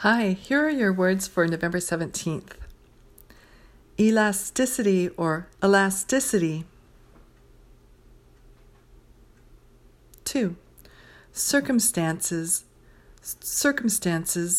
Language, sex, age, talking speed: English, female, 50-69, 60 wpm